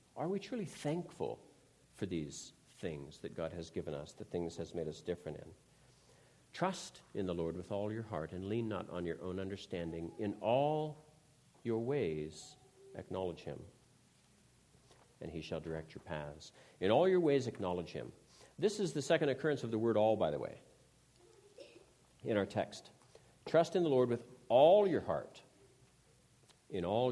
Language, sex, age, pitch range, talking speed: English, male, 60-79, 90-145 Hz, 170 wpm